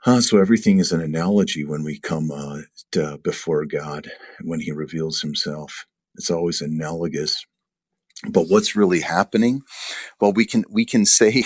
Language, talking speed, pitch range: English, 155 wpm, 80-135 Hz